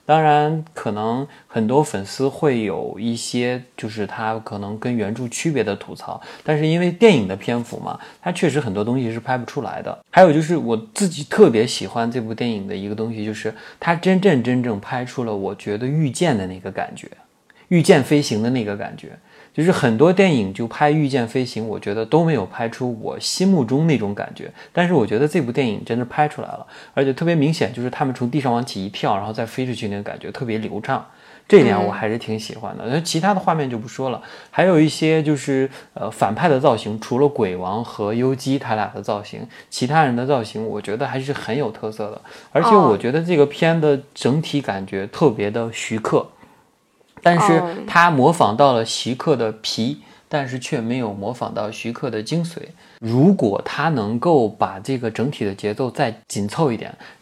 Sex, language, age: male, Chinese, 20-39